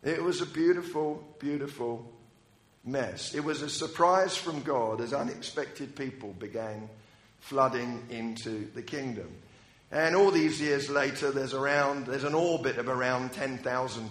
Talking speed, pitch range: 140 wpm, 125-165 Hz